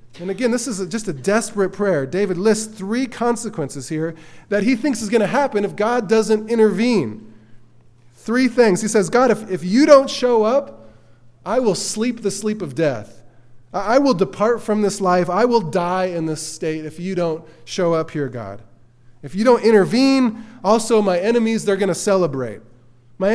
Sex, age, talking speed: male, 20-39, 190 wpm